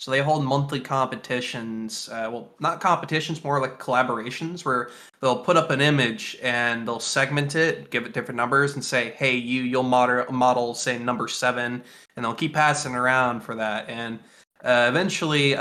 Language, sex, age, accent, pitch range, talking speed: English, male, 20-39, American, 120-150 Hz, 180 wpm